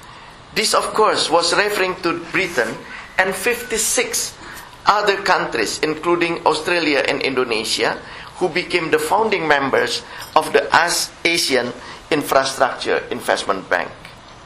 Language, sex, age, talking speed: English, male, 50-69, 110 wpm